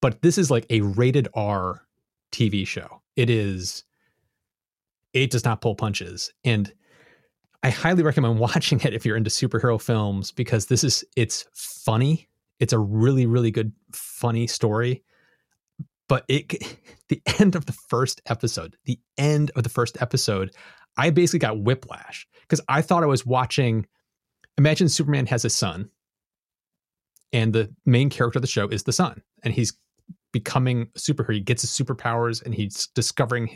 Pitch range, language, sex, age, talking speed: 115-145 Hz, English, male, 30-49, 160 wpm